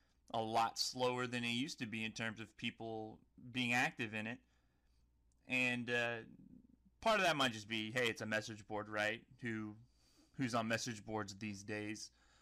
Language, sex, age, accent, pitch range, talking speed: English, male, 30-49, American, 105-135 Hz, 180 wpm